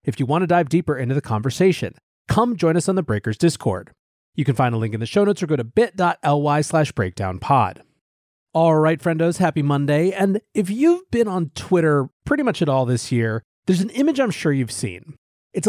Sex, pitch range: male, 130-185 Hz